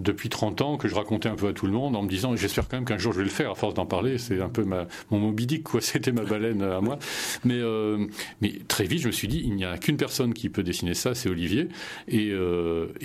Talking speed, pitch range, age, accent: 290 wpm, 105-145 Hz, 40-59, French